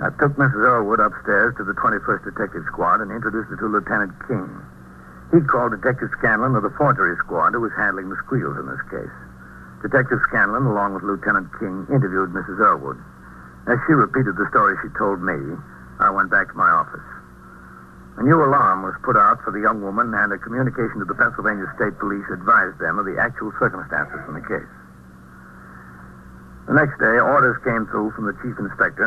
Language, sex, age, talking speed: English, male, 60-79, 190 wpm